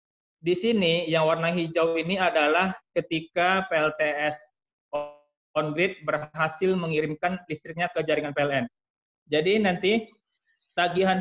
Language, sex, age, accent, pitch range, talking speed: Indonesian, male, 20-39, native, 155-190 Hz, 105 wpm